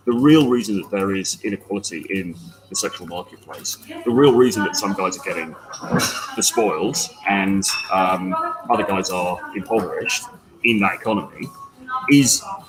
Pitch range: 100-165 Hz